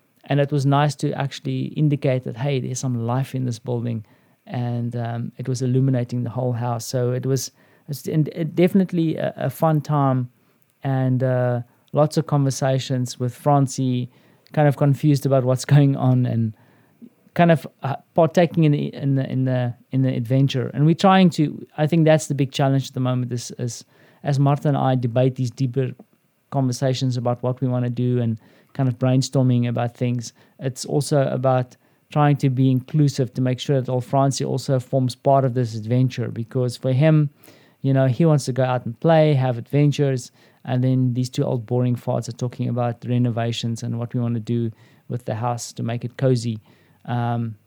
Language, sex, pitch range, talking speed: English, male, 125-145 Hz, 195 wpm